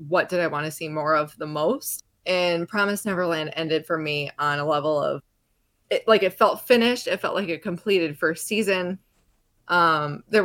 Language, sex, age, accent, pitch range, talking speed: English, female, 20-39, American, 150-190 Hz, 195 wpm